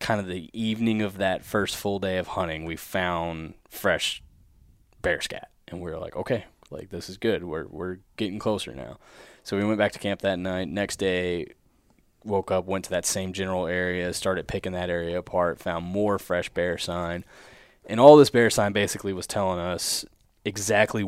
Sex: male